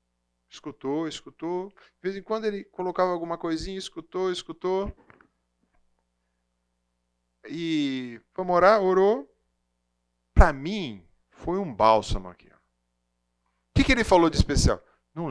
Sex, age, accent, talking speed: male, 40-59, Brazilian, 115 wpm